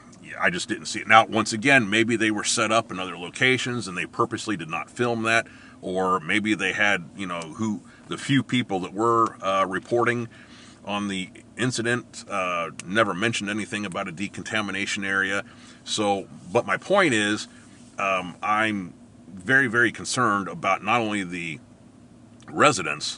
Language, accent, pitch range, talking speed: English, American, 95-115 Hz, 165 wpm